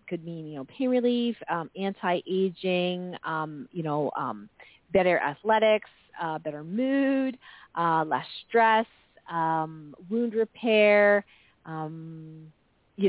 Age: 40-59